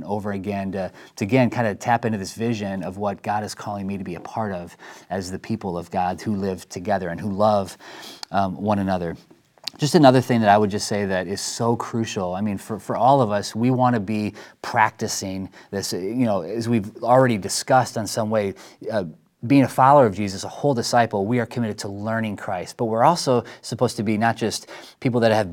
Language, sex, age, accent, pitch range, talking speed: English, male, 30-49, American, 100-120 Hz, 225 wpm